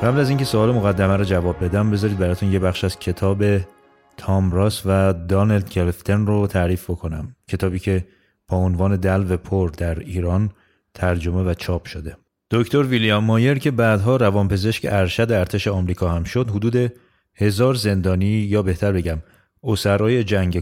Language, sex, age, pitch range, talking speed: Persian, male, 30-49, 90-110 Hz, 155 wpm